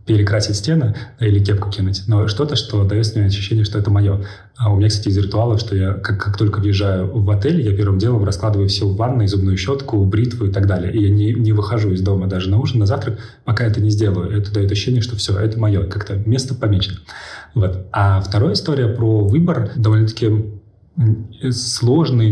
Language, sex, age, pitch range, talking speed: Russian, male, 30-49, 100-110 Hz, 200 wpm